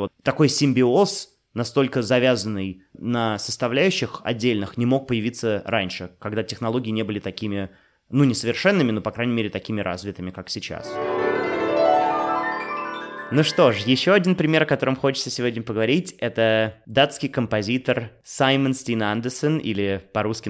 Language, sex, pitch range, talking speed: Russian, male, 115-145 Hz, 130 wpm